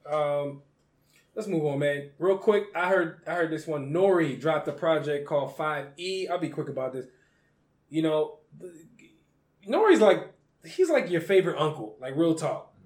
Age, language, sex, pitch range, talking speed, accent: 20-39, English, male, 150-195 Hz, 170 wpm, American